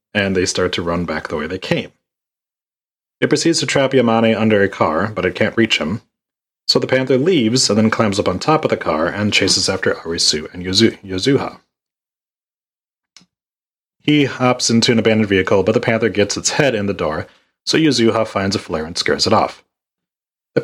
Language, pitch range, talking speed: English, 100-125 Hz, 195 wpm